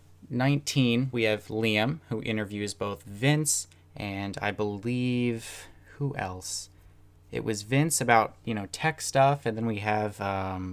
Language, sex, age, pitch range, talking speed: English, male, 20-39, 100-125 Hz, 145 wpm